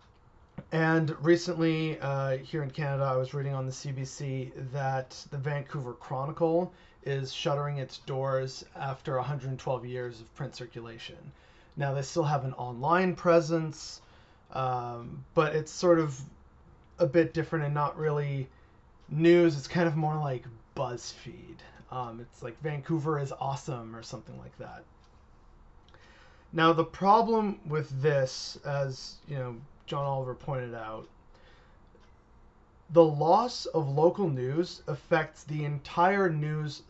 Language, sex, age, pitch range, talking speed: English, male, 30-49, 130-165 Hz, 135 wpm